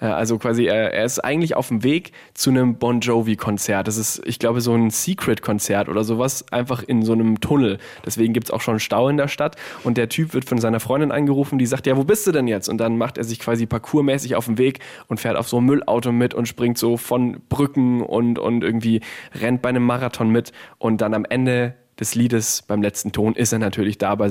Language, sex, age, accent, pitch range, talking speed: German, male, 10-29, German, 110-135 Hz, 235 wpm